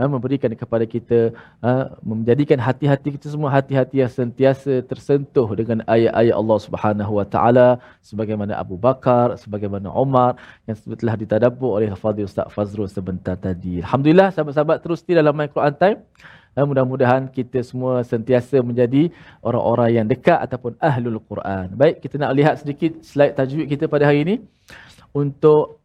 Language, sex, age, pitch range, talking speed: Malayalam, male, 20-39, 120-155 Hz, 145 wpm